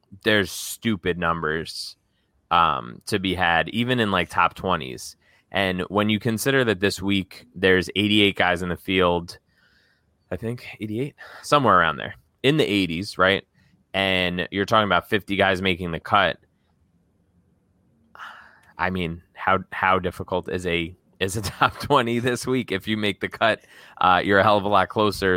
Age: 20-39